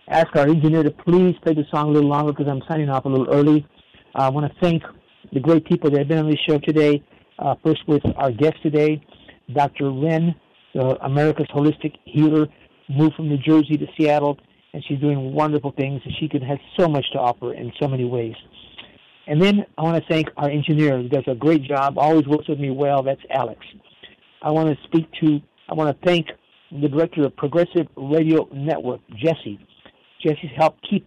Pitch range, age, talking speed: 140-155 Hz, 60-79, 205 wpm